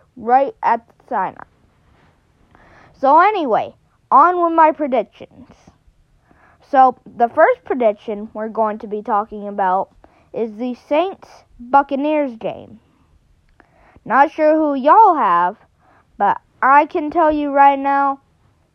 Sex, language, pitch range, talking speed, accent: female, English, 220-285 Hz, 115 wpm, American